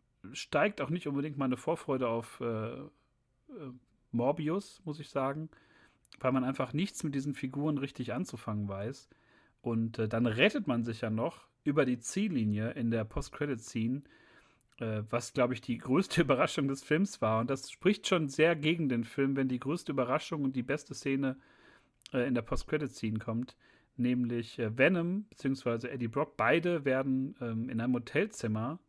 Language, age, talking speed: German, 40-59, 160 wpm